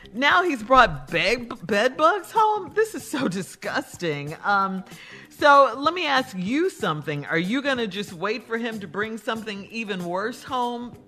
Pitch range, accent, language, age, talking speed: 175-250 Hz, American, English, 40-59, 170 wpm